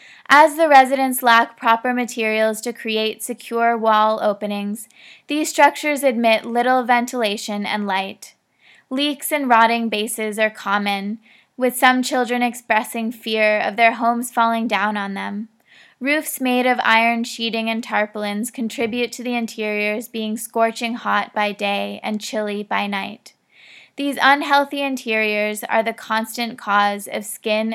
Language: English